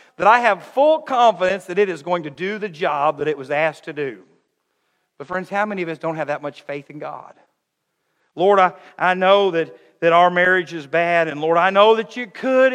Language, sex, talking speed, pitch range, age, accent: English, male, 230 wpm, 175-225 Hz, 50-69, American